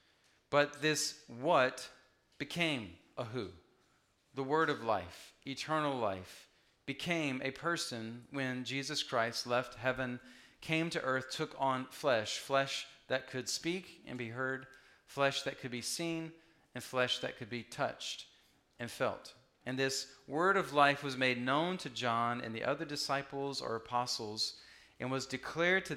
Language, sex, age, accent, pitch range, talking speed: English, male, 40-59, American, 125-155 Hz, 150 wpm